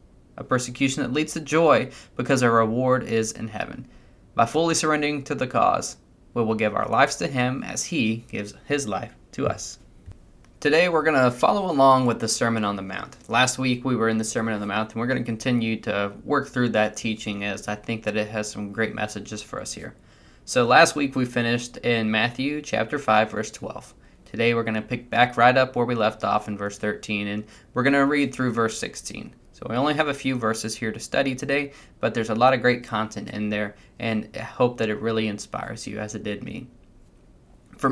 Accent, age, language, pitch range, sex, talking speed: American, 20-39, English, 110-130 Hz, male, 225 wpm